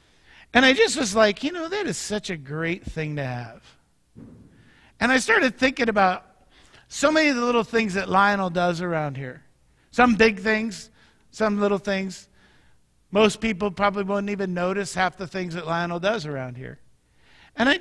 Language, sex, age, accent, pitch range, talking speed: English, male, 50-69, American, 150-230 Hz, 180 wpm